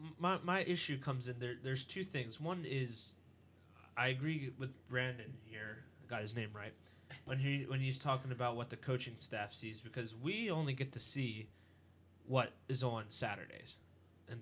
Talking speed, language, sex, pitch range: 180 wpm, English, male, 105-135 Hz